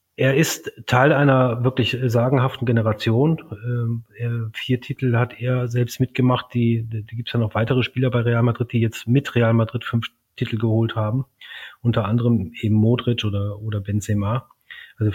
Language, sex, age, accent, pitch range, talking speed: German, male, 30-49, German, 105-120 Hz, 165 wpm